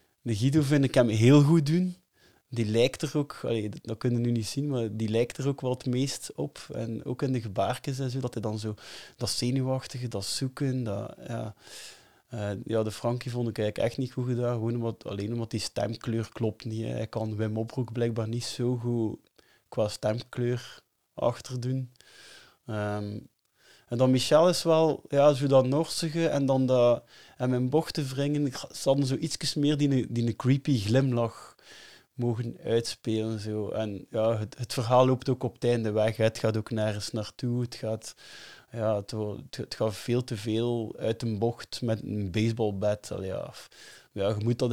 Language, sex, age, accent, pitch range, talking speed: Dutch, male, 20-39, Dutch, 110-130 Hz, 185 wpm